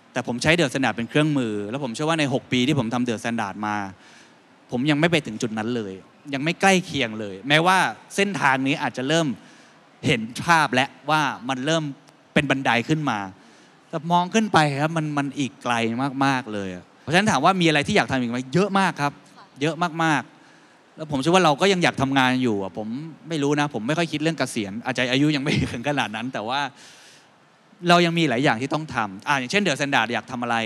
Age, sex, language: 20-39, male, Thai